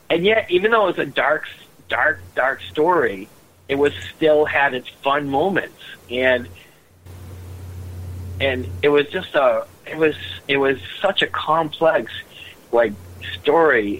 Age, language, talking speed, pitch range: 40-59, English, 140 wpm, 90-120 Hz